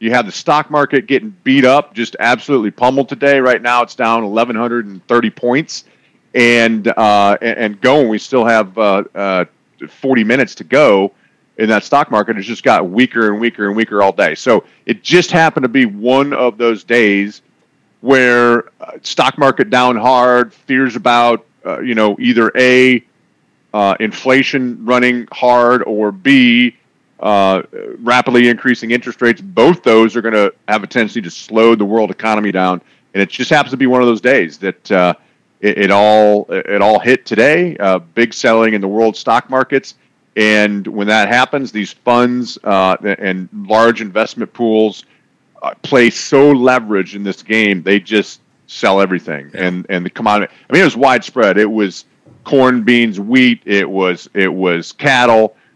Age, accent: 40-59, American